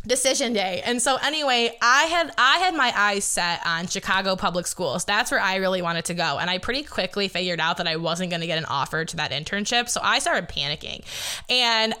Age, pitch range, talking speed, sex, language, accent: 20-39, 175-240 Hz, 225 wpm, female, English, American